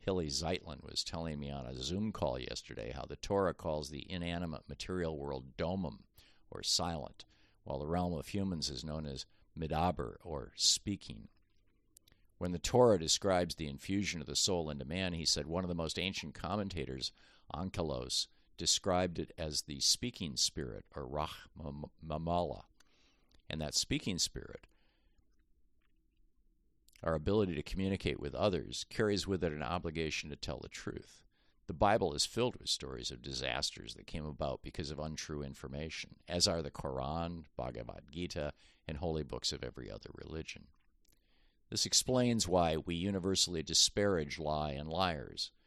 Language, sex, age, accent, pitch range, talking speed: English, male, 50-69, American, 75-95 Hz, 155 wpm